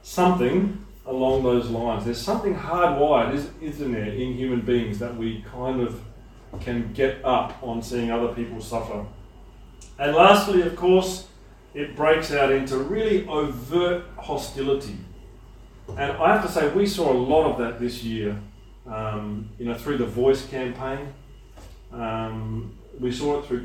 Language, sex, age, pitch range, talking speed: English, male, 40-59, 115-170 Hz, 150 wpm